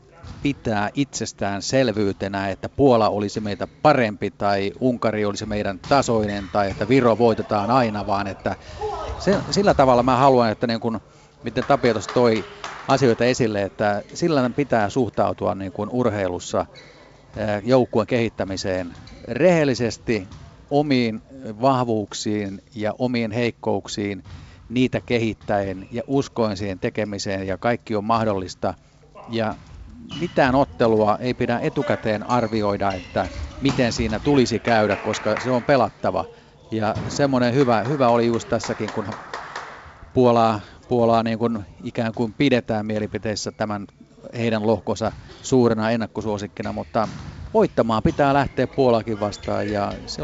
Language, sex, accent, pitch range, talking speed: Finnish, male, native, 105-125 Hz, 125 wpm